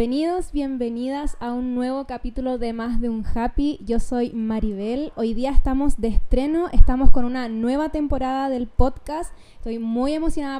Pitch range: 235-275 Hz